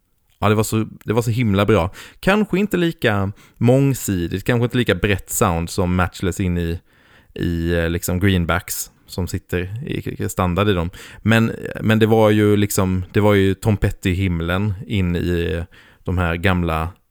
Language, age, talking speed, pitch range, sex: Swedish, 20-39, 170 wpm, 90-115 Hz, male